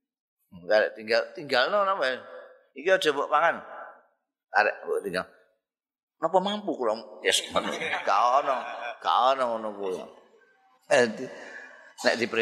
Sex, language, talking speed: male, Indonesian, 90 wpm